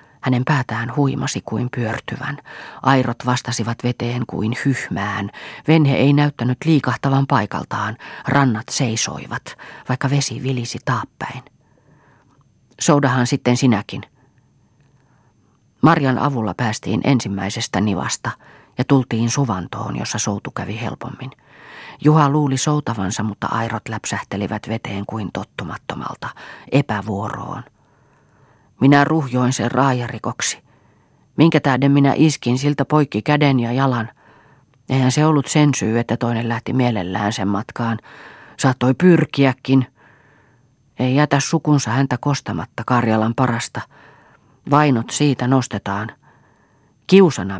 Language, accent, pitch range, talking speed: Finnish, native, 115-140 Hz, 105 wpm